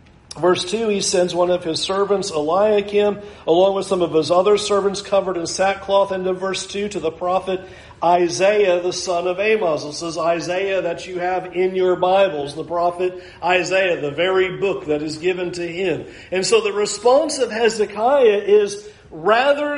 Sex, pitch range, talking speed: male, 195-245 Hz, 175 wpm